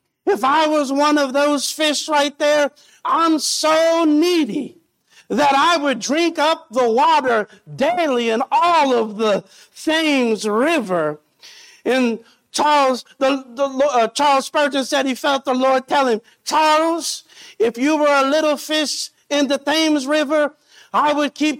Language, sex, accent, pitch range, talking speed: English, male, American, 250-305 Hz, 150 wpm